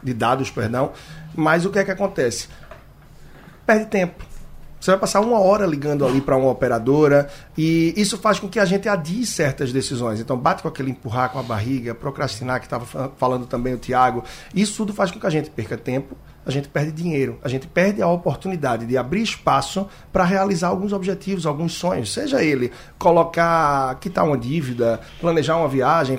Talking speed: 190 wpm